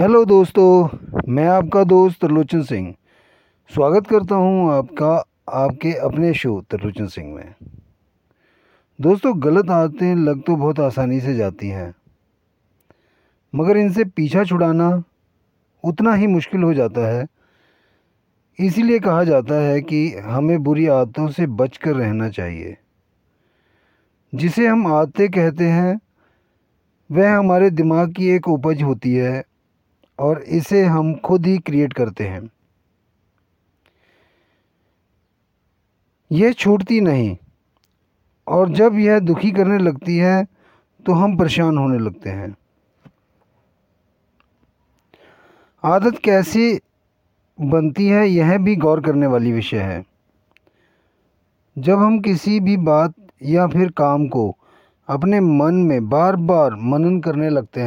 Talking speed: 120 wpm